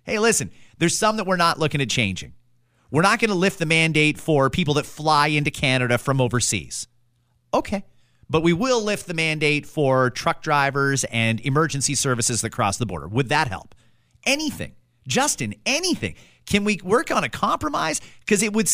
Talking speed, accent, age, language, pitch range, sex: 185 wpm, American, 30-49, English, 120-185 Hz, male